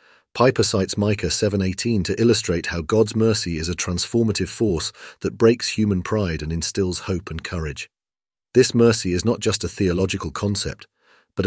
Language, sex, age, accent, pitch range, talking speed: English, male, 40-59, British, 90-110 Hz, 160 wpm